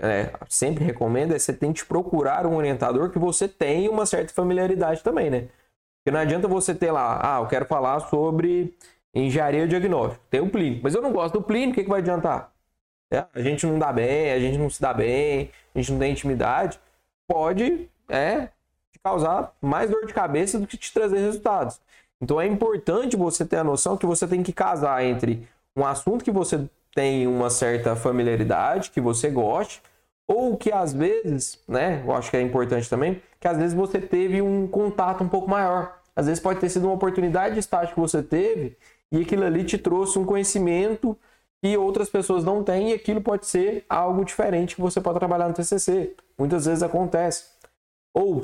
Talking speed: 200 wpm